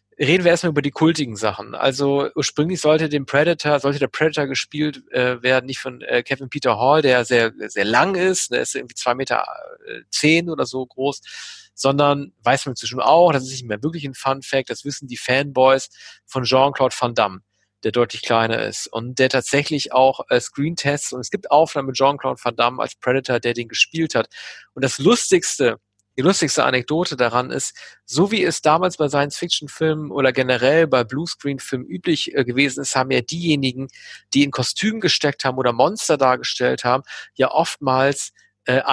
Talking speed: 190 wpm